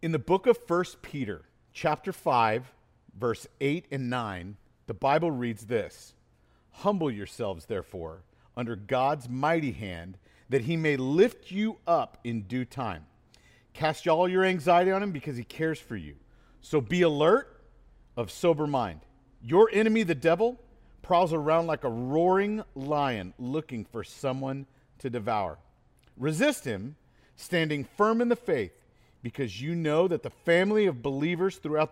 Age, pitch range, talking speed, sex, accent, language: 50-69, 120-170 Hz, 150 wpm, male, American, English